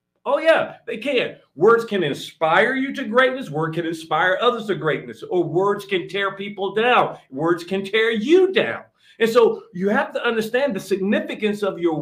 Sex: male